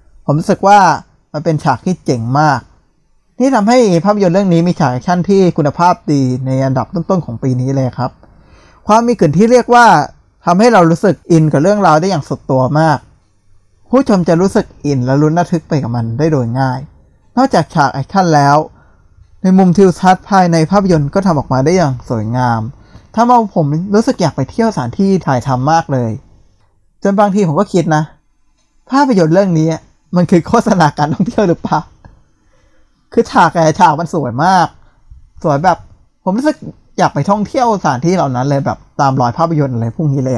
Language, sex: Thai, male